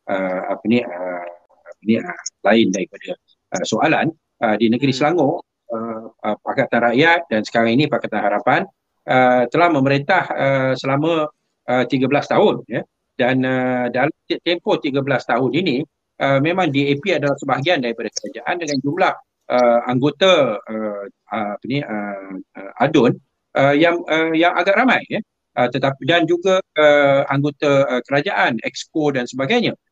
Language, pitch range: Malay, 115-145 Hz